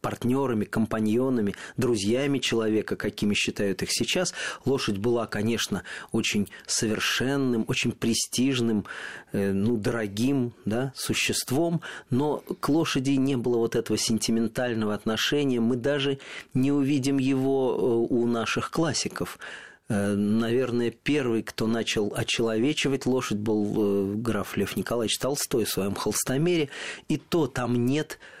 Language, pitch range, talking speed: Russian, 110-135 Hz, 115 wpm